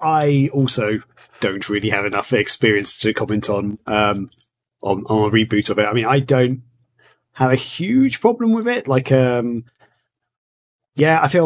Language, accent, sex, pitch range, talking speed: English, British, male, 110-130 Hz, 170 wpm